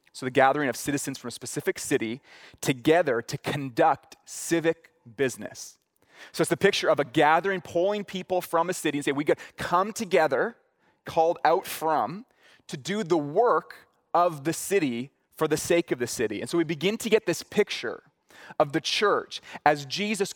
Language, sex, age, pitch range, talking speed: English, male, 30-49, 135-190 Hz, 180 wpm